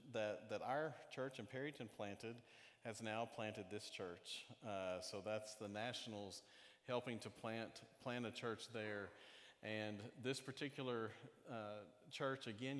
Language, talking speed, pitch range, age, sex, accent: English, 140 wpm, 105-125 Hz, 40-59, male, American